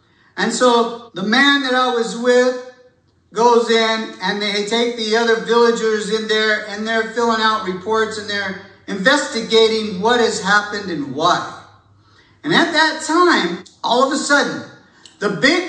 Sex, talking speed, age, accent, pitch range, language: male, 155 wpm, 50-69, American, 205-275 Hz, English